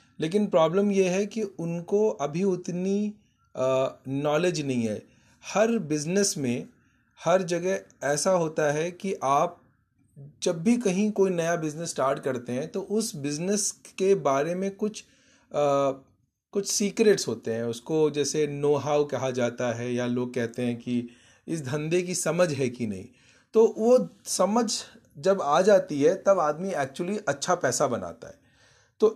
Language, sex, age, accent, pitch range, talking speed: English, male, 30-49, Indian, 140-205 Hz, 155 wpm